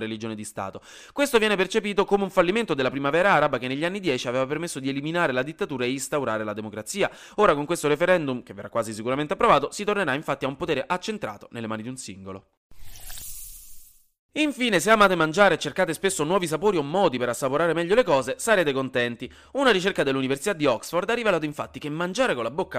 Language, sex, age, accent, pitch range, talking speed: Italian, male, 30-49, native, 120-190 Hz, 205 wpm